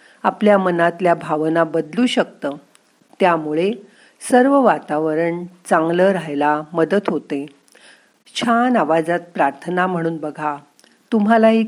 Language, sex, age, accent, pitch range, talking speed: Marathi, female, 50-69, native, 160-215 Hz, 90 wpm